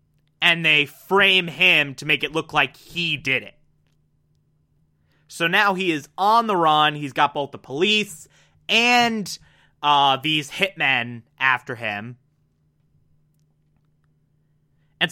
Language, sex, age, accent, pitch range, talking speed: English, male, 30-49, American, 145-185 Hz, 125 wpm